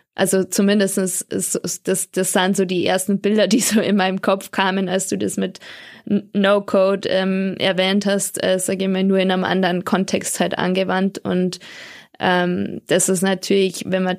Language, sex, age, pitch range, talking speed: English, female, 20-39, 185-200 Hz, 185 wpm